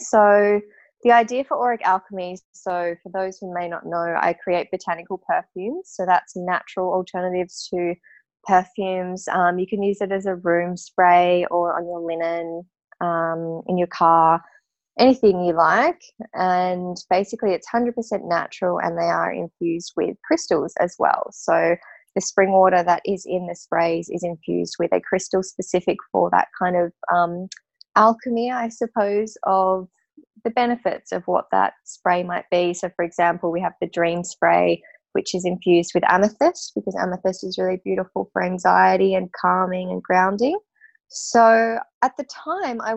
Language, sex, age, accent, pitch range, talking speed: English, female, 20-39, Australian, 175-220 Hz, 165 wpm